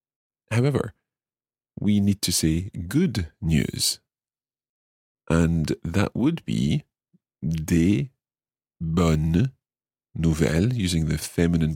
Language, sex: English, male